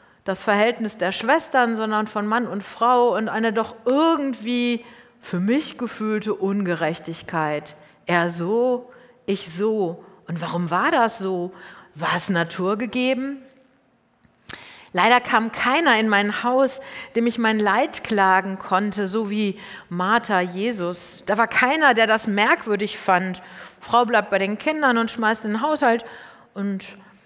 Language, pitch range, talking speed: German, 185-240 Hz, 140 wpm